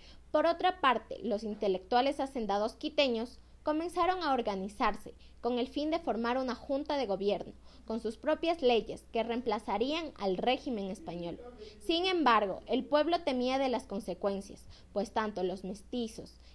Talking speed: 145 wpm